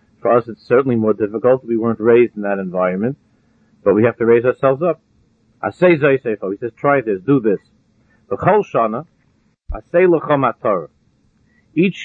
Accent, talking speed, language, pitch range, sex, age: American, 140 wpm, English, 110-145 Hz, male, 50-69